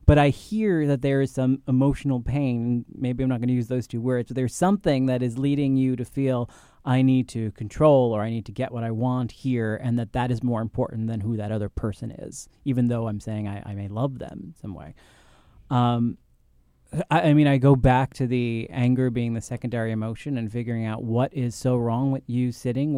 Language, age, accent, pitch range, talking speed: English, 30-49, American, 115-135 Hz, 225 wpm